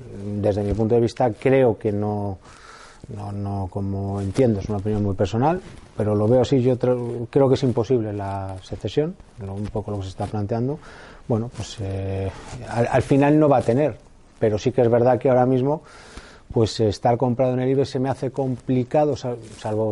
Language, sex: Spanish, male